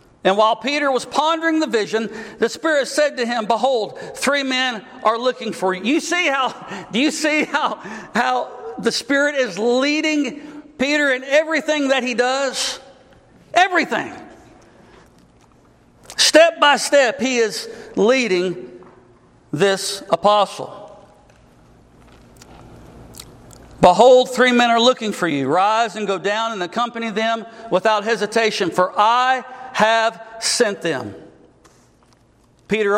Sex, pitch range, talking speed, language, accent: male, 205-265 Hz, 125 wpm, English, American